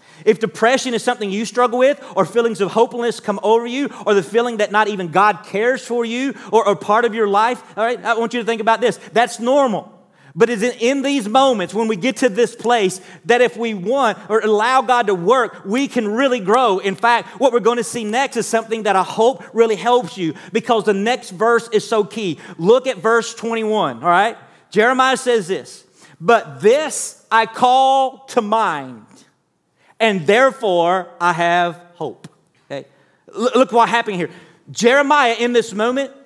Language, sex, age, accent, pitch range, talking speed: English, male, 40-59, American, 205-245 Hz, 195 wpm